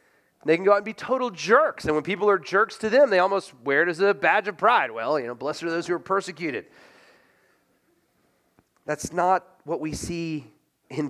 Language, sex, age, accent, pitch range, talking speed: English, male, 30-49, American, 130-175 Hz, 210 wpm